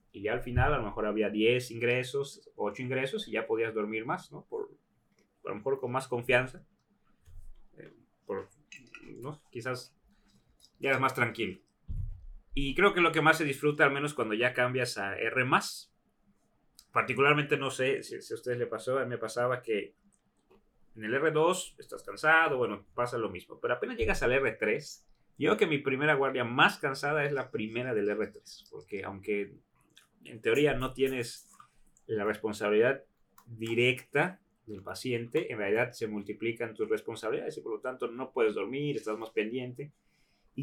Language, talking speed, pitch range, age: Spanish, 170 wpm, 115-155 Hz, 30-49